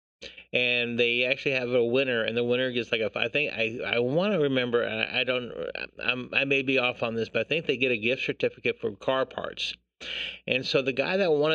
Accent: American